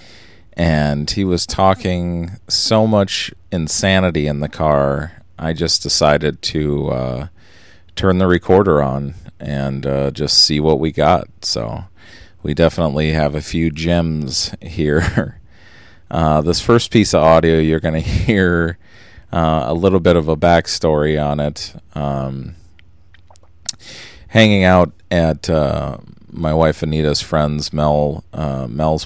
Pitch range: 75-90 Hz